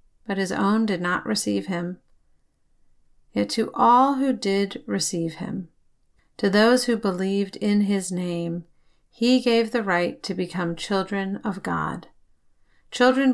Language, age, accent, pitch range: English, 40-59, American, 170-220 Hz